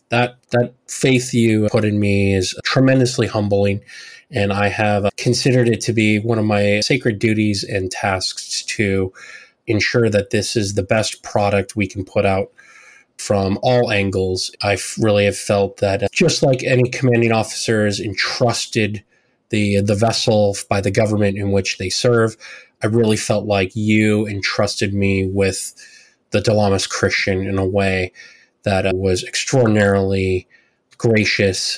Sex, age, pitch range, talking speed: male, 20-39, 100-115 Hz, 145 wpm